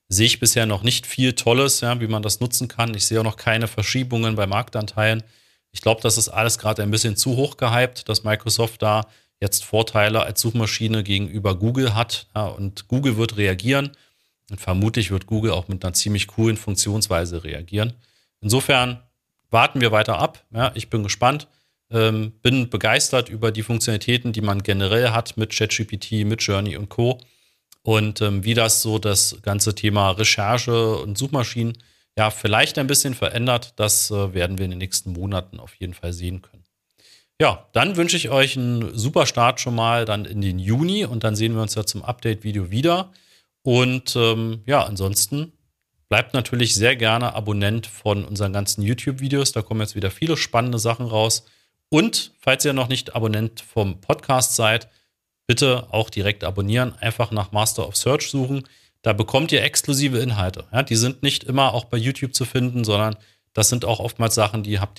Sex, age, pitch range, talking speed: male, 40-59, 105-125 Hz, 180 wpm